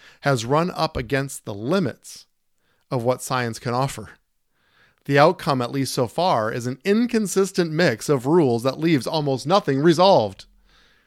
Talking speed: 150 wpm